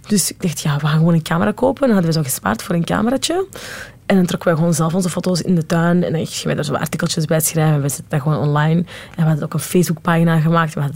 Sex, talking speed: female, 285 wpm